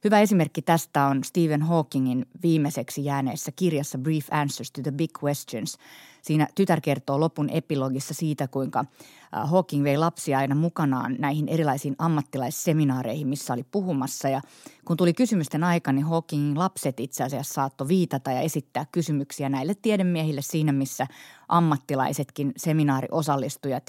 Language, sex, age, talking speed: Finnish, female, 30-49, 135 wpm